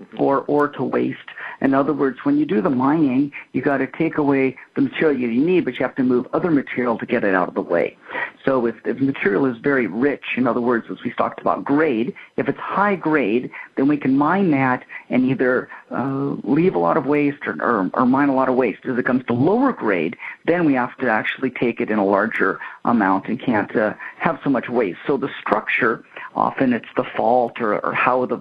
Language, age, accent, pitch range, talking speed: English, 50-69, American, 125-145 Hz, 230 wpm